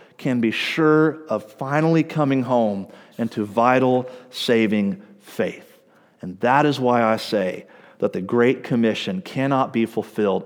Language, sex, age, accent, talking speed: English, male, 40-59, American, 140 wpm